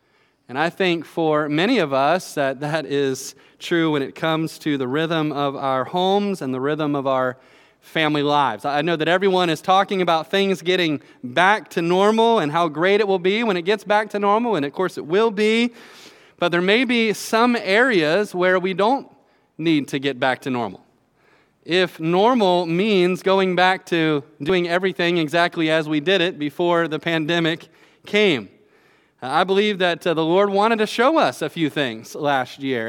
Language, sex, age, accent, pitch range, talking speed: English, male, 30-49, American, 145-190 Hz, 190 wpm